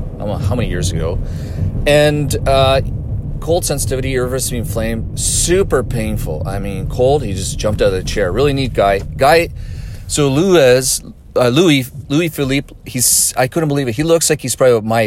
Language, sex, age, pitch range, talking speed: English, male, 30-49, 100-135 Hz, 180 wpm